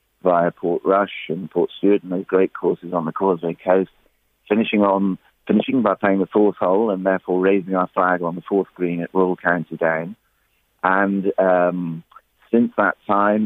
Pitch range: 90-100 Hz